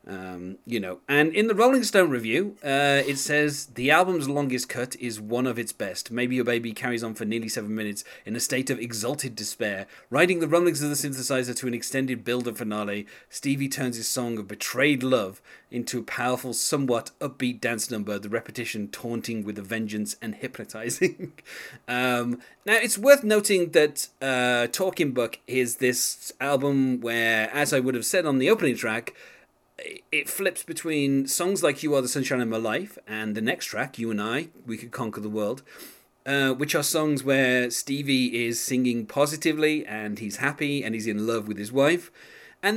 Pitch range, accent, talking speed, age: 115-150 Hz, British, 190 wpm, 30-49